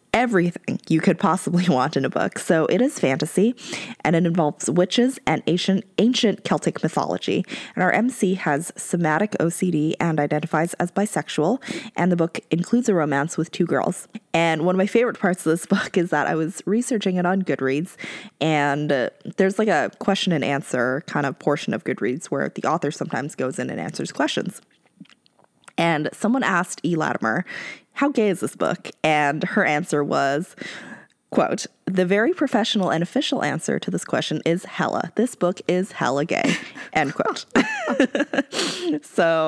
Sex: female